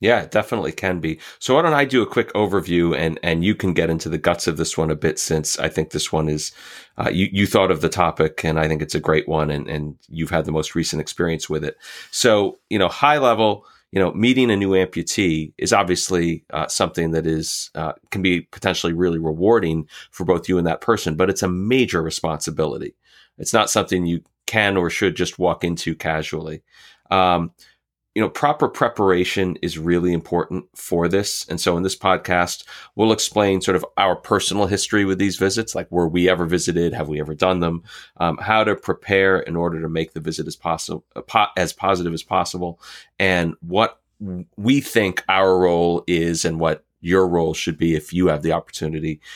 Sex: male